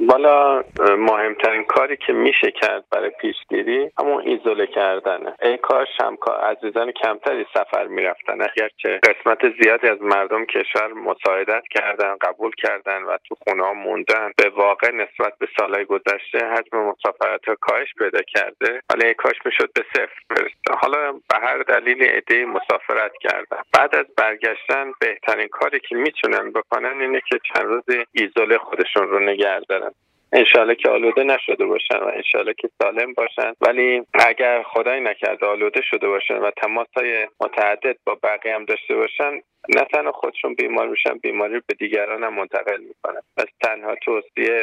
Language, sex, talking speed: Persian, male, 150 wpm